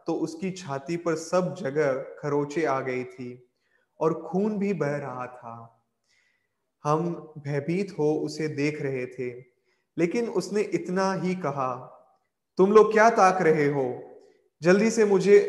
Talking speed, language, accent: 145 wpm, Hindi, native